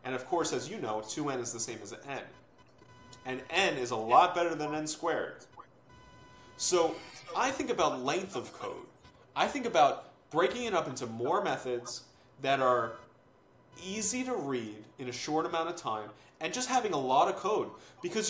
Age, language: 30-49, English